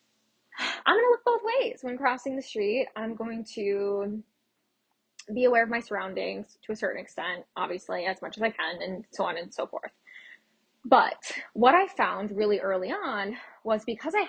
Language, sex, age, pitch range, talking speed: English, female, 10-29, 205-310 Hz, 180 wpm